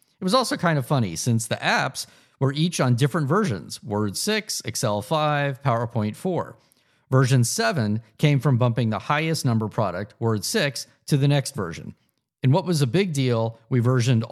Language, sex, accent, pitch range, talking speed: English, male, American, 115-145 Hz, 180 wpm